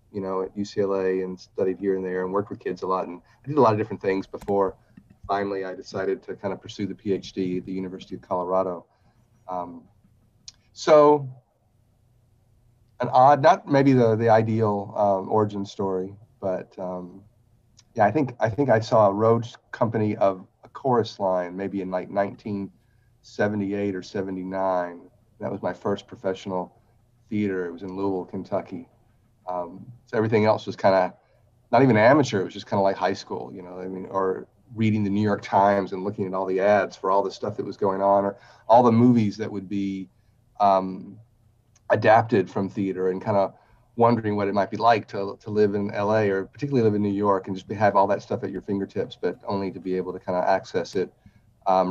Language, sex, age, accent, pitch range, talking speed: English, male, 40-59, American, 95-110 Hz, 205 wpm